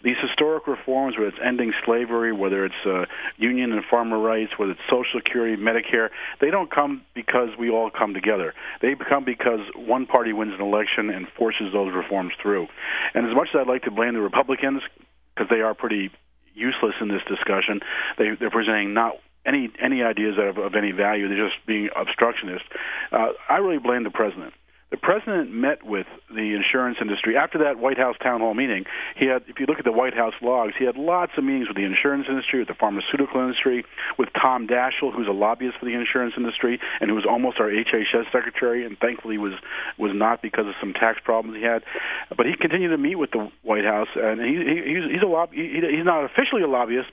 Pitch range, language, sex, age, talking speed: 110-150 Hz, English, male, 40-59, 210 wpm